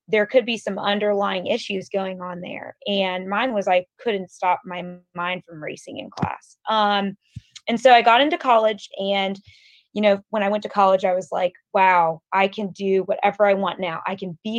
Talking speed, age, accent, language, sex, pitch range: 205 wpm, 20-39, American, English, female, 190-215 Hz